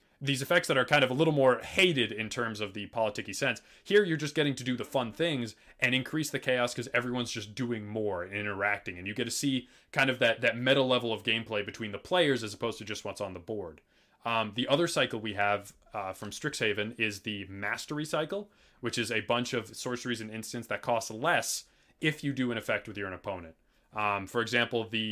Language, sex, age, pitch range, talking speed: English, male, 20-39, 110-130 Hz, 230 wpm